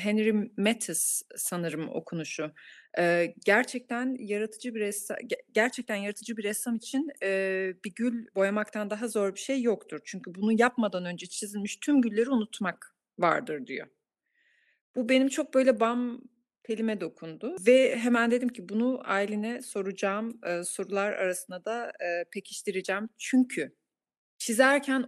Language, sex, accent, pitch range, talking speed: Turkish, female, native, 205-255 Hz, 120 wpm